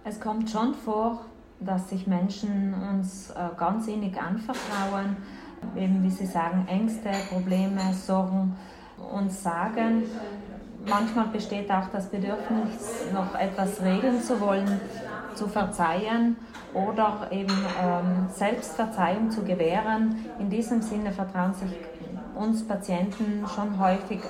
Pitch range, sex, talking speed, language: 185-215 Hz, female, 115 wpm, German